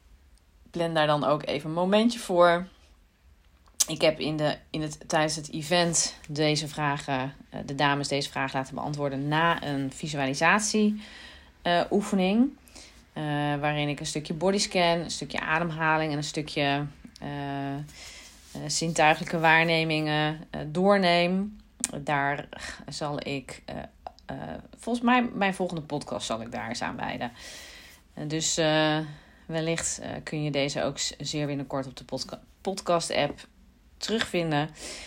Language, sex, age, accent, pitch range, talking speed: Dutch, female, 30-49, Dutch, 140-170 Hz, 130 wpm